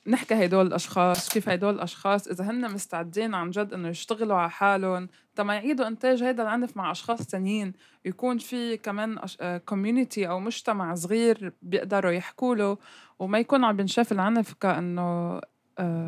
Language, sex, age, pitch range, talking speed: Arabic, female, 20-39, 175-215 Hz, 155 wpm